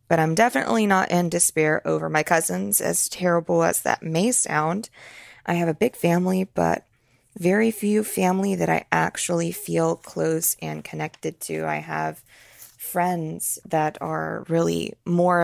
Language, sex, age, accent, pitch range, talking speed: English, female, 20-39, American, 155-210 Hz, 150 wpm